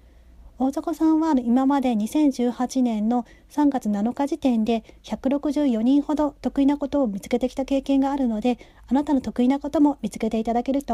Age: 30-49